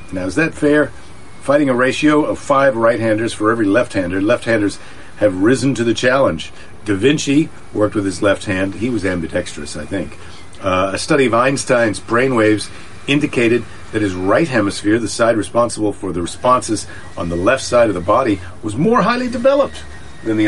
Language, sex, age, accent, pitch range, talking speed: English, male, 50-69, American, 95-140 Hz, 180 wpm